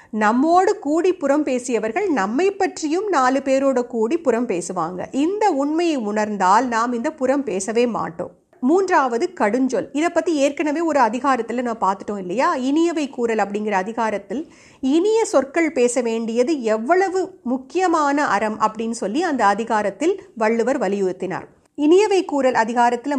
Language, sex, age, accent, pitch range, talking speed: Tamil, female, 50-69, native, 230-320 Hz, 125 wpm